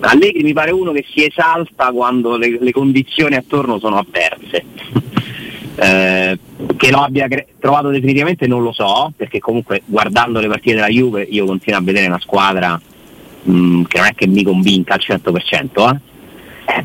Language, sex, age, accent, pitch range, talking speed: Italian, male, 40-59, native, 100-130 Hz, 165 wpm